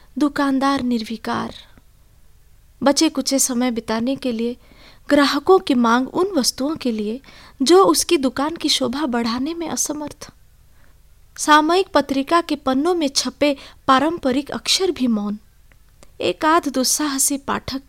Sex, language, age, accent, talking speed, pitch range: female, Hindi, 20-39, native, 125 wpm, 230-280 Hz